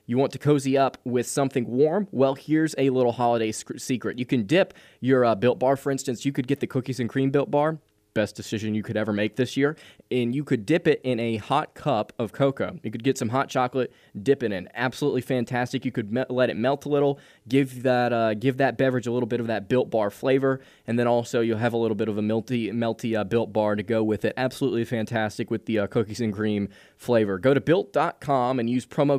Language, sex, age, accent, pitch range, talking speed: English, male, 20-39, American, 110-135 Hz, 245 wpm